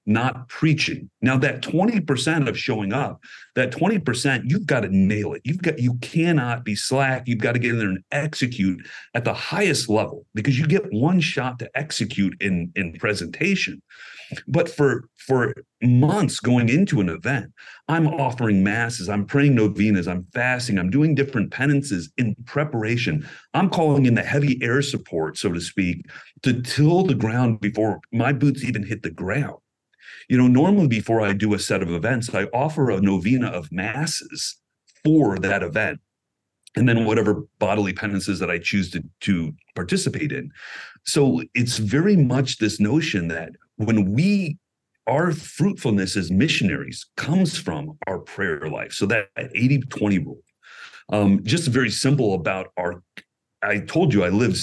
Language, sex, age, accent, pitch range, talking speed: English, male, 40-59, American, 100-145 Hz, 165 wpm